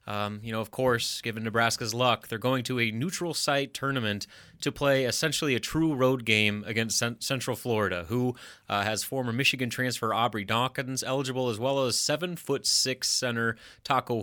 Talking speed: 175 wpm